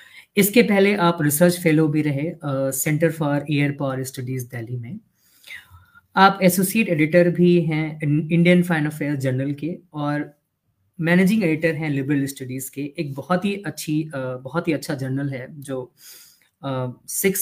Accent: native